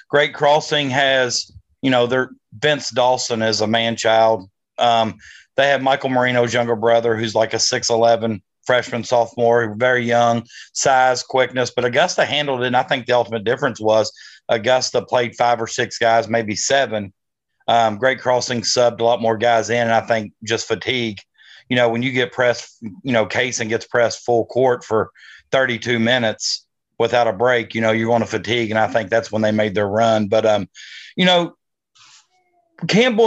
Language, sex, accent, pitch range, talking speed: English, male, American, 115-135 Hz, 180 wpm